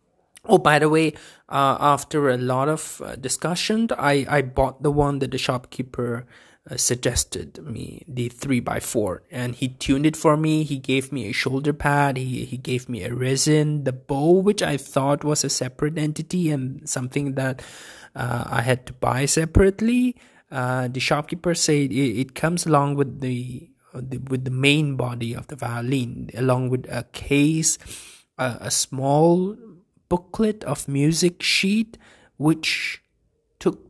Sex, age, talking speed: male, 20-39, 170 wpm